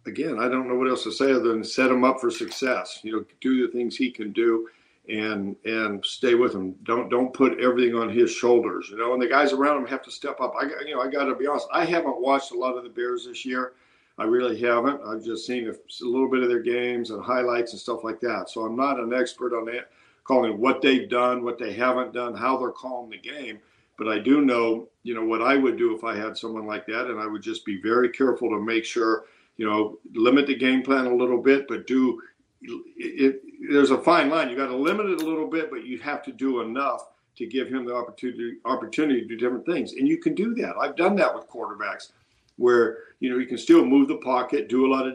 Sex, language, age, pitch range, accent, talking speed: male, English, 50-69, 120-135 Hz, American, 260 wpm